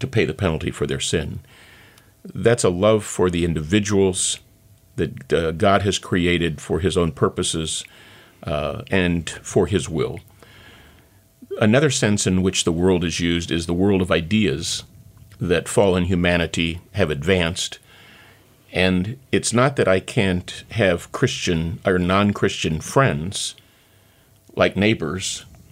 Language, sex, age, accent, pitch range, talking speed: English, male, 50-69, American, 85-100 Hz, 135 wpm